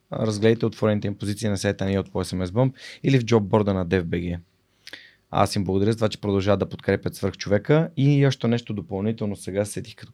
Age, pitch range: 20-39, 95-110 Hz